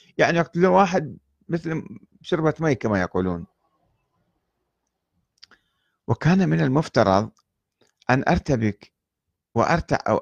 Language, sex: Arabic, male